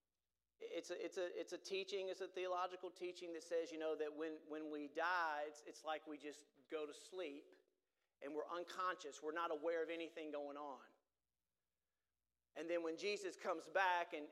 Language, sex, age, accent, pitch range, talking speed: English, male, 40-59, American, 155-220 Hz, 190 wpm